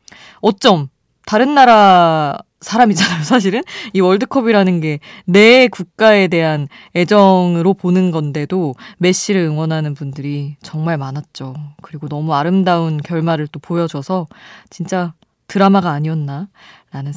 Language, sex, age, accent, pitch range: Korean, female, 20-39, native, 155-215 Hz